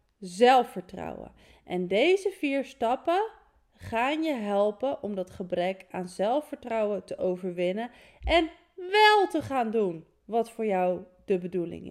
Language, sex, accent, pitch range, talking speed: Dutch, female, Dutch, 190-255 Hz, 125 wpm